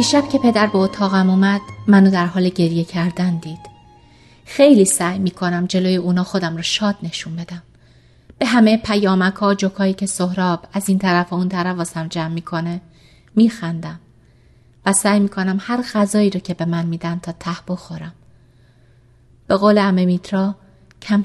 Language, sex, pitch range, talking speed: Persian, female, 170-210 Hz, 160 wpm